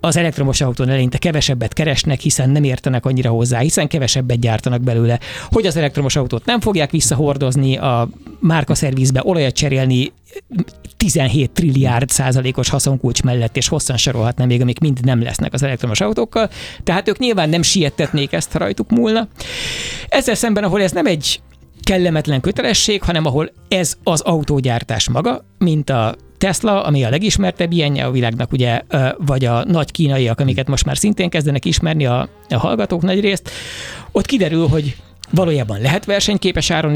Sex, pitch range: male, 130-175 Hz